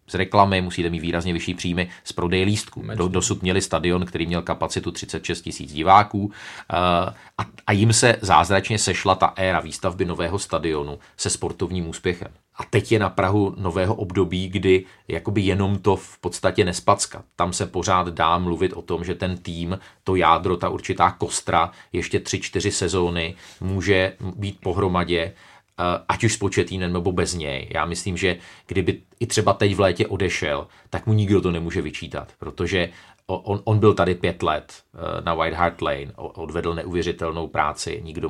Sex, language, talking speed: male, Czech, 170 wpm